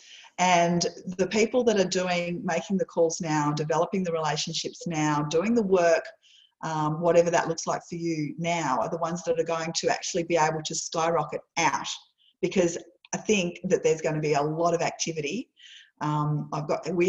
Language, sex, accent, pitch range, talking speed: English, female, Australian, 160-195 Hz, 190 wpm